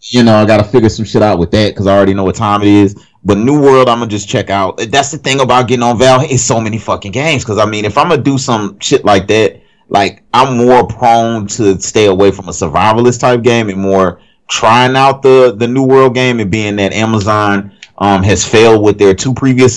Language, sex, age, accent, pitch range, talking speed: English, male, 30-49, American, 95-120 Hz, 255 wpm